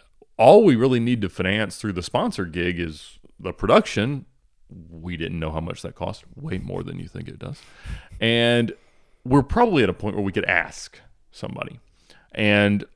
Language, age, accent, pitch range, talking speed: English, 30-49, American, 95-135 Hz, 180 wpm